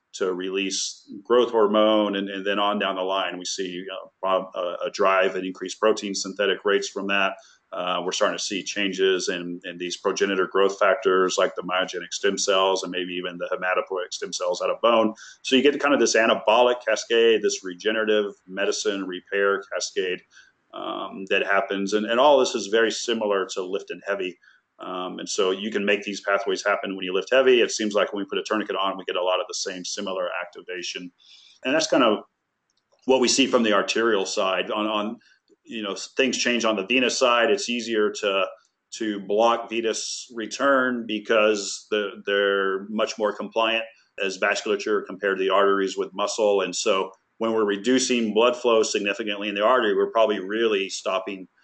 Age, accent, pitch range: 40-59, American, 95-115 Hz